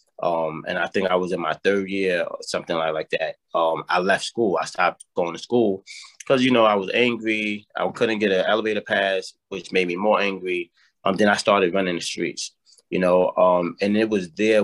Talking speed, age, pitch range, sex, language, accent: 225 wpm, 20-39, 90-110 Hz, male, English, American